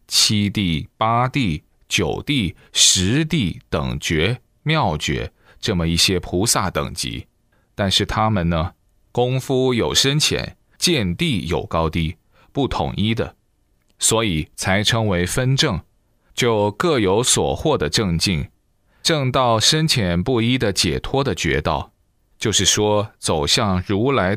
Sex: male